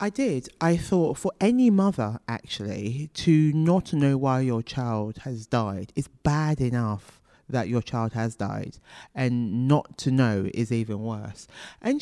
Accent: British